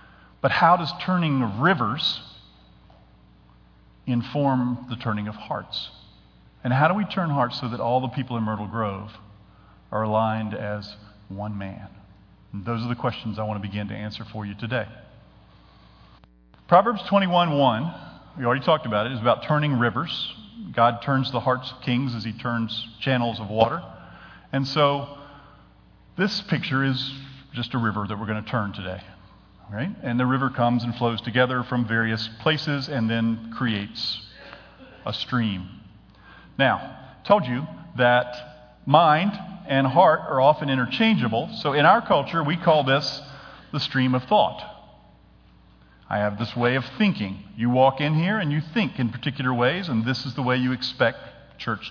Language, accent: English, American